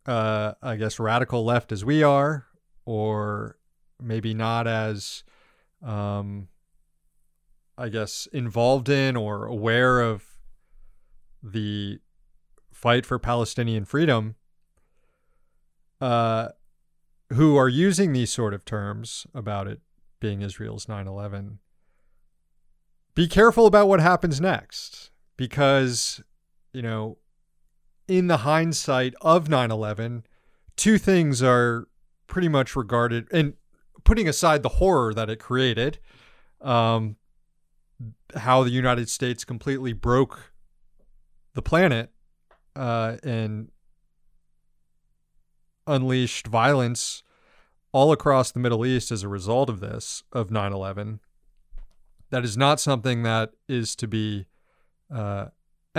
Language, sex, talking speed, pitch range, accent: English, male, 110 wpm, 110-135 Hz, American